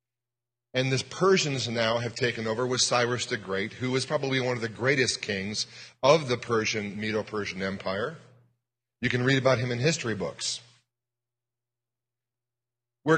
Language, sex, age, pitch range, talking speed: English, male, 40-59, 120-140 Hz, 150 wpm